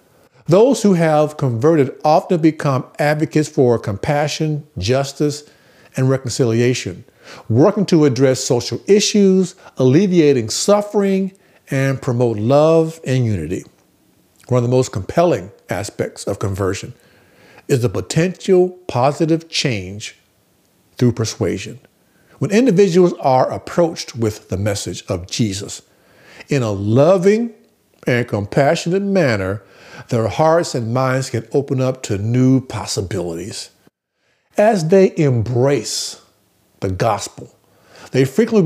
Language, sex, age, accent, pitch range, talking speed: English, male, 50-69, American, 120-160 Hz, 110 wpm